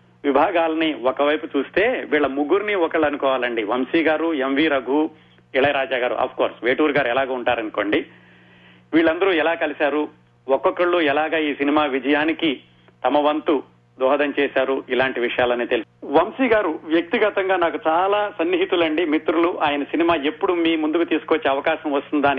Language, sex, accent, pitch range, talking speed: Telugu, male, native, 120-165 Hz, 130 wpm